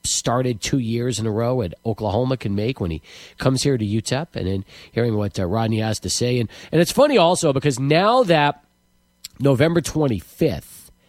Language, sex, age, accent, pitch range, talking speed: English, male, 40-59, American, 115-165 Hz, 190 wpm